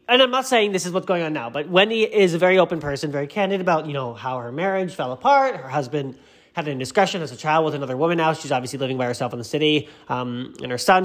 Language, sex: English, male